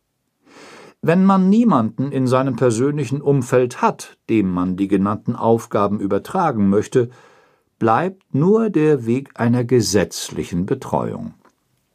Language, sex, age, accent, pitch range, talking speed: German, male, 60-79, German, 110-150 Hz, 110 wpm